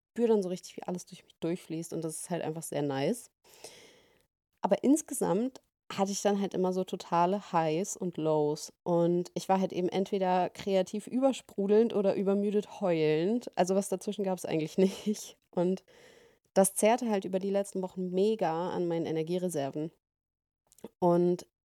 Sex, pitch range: female, 160-200 Hz